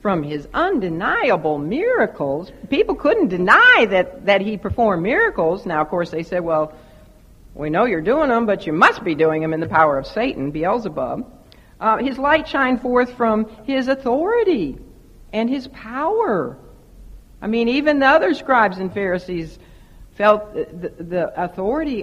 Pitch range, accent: 170-255 Hz, American